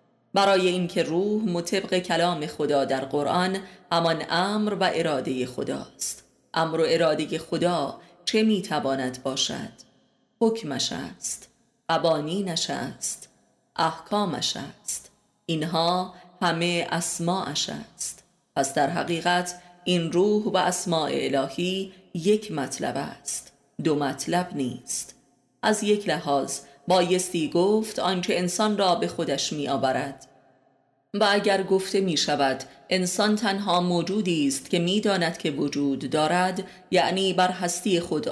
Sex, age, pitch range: female, 30-49, 155-190 Hz